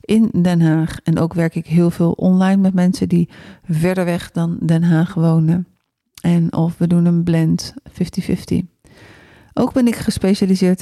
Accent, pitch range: Dutch, 165-185 Hz